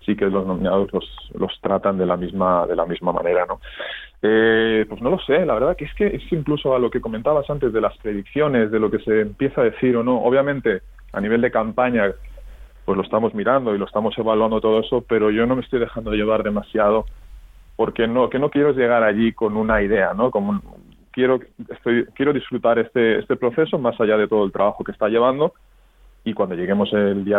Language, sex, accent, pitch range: Spanish, male, Spanish, 105-135 Hz